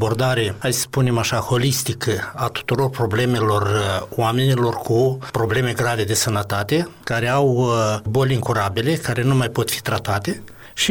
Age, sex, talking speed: 60-79, male, 145 wpm